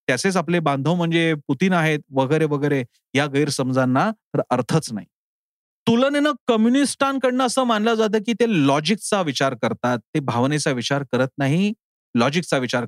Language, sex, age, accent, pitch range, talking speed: Marathi, male, 40-59, native, 140-225 Hz, 100 wpm